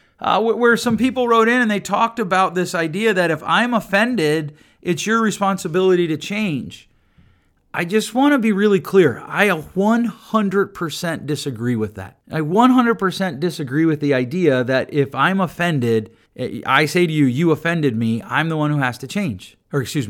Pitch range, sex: 125-185 Hz, male